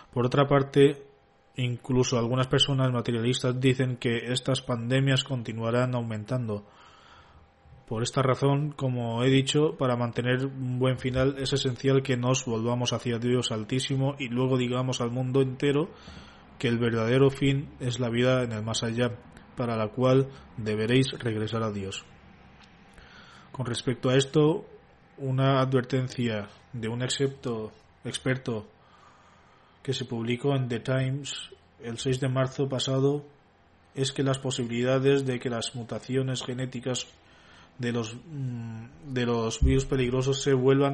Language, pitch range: Spanish, 120-135 Hz